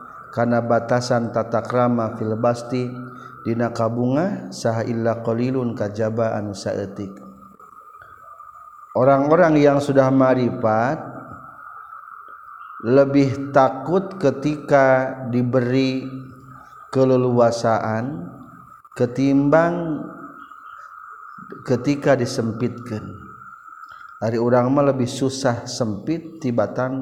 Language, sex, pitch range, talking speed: Indonesian, male, 115-145 Hz, 65 wpm